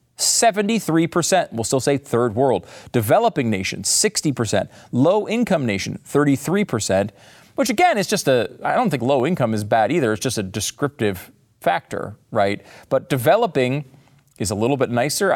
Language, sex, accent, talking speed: English, male, American, 150 wpm